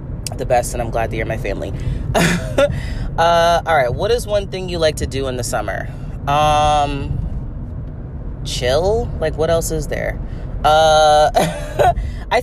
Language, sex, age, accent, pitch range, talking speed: English, female, 30-49, American, 120-150 Hz, 155 wpm